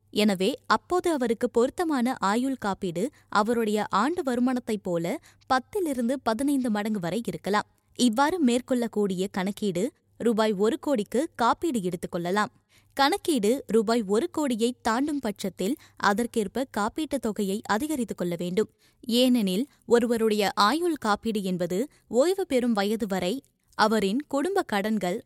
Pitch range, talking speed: 205-260 Hz, 115 wpm